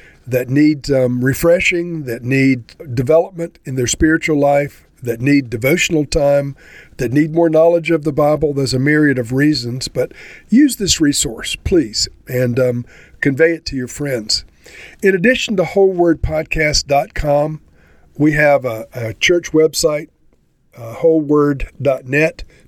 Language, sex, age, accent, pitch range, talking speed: English, male, 50-69, American, 125-155 Hz, 135 wpm